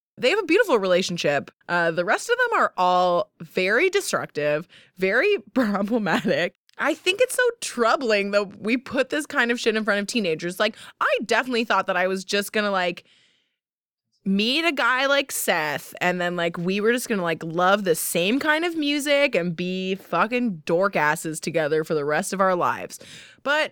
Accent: American